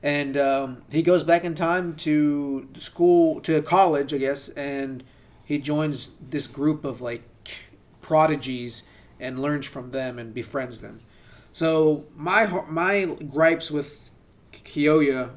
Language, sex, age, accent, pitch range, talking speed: English, male, 30-49, American, 130-155 Hz, 135 wpm